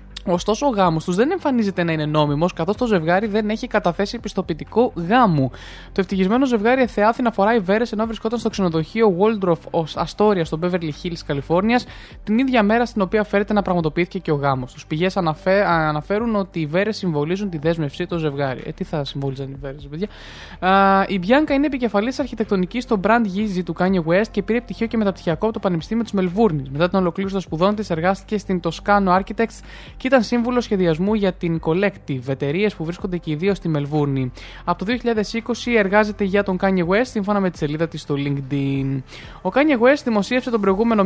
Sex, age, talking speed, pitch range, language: male, 20-39, 190 wpm, 165-220 Hz, Greek